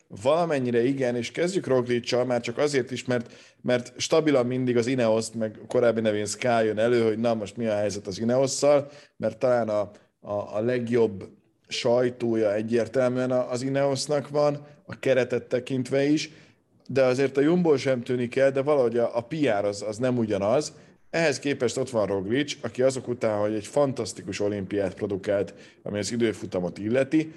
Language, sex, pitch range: Hungarian, male, 110-135 Hz